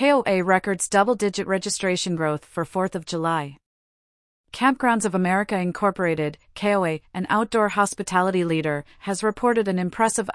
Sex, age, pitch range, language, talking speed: female, 30-49, 165-205 Hz, English, 130 wpm